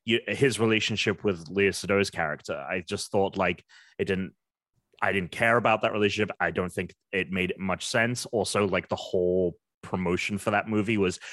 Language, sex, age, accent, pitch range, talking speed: English, male, 30-49, British, 95-130 Hz, 180 wpm